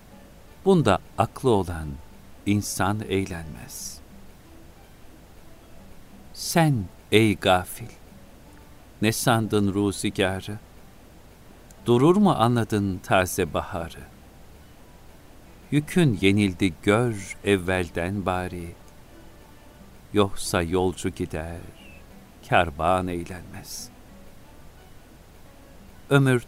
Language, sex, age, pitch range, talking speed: Turkish, male, 50-69, 85-110 Hz, 60 wpm